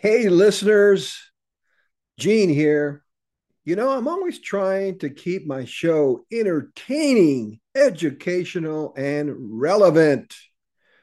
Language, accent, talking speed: English, American, 90 wpm